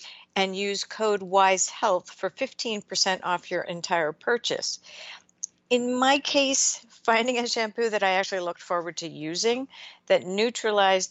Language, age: English, 50-69